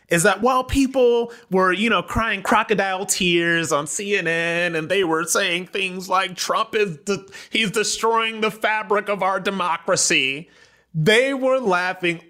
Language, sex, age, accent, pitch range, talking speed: English, male, 30-49, American, 145-210 Hz, 150 wpm